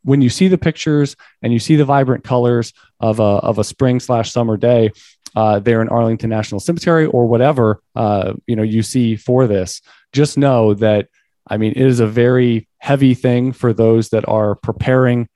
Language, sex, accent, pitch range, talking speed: English, male, American, 105-120 Hz, 195 wpm